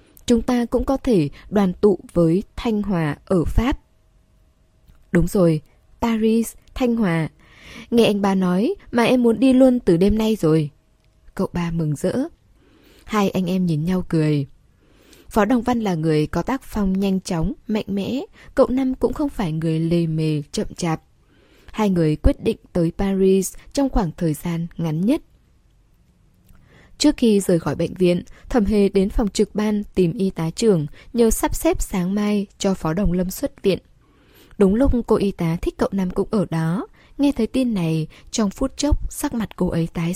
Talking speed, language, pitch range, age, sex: 185 wpm, Vietnamese, 165-225 Hz, 10-29, female